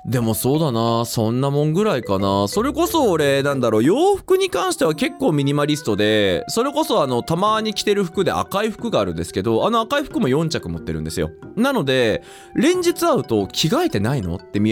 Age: 20-39